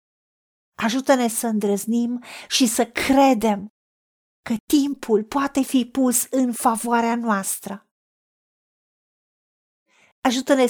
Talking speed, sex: 85 wpm, female